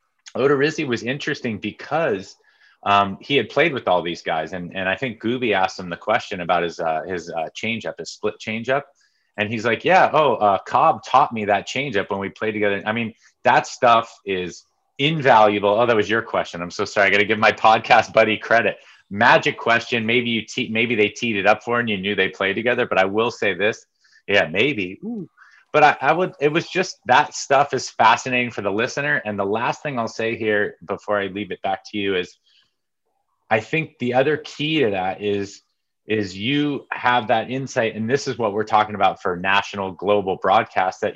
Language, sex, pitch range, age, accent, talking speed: English, male, 100-125 Hz, 30-49, American, 215 wpm